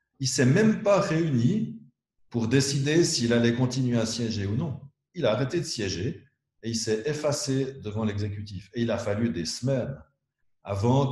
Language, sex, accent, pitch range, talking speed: French, male, French, 110-135 Hz, 180 wpm